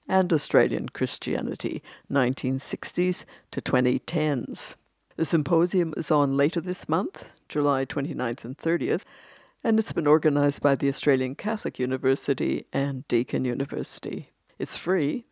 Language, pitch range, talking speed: English, 135-165 Hz, 120 wpm